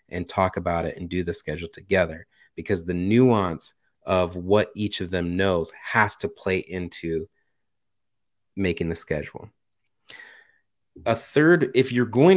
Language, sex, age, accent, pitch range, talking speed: English, male, 30-49, American, 95-115 Hz, 145 wpm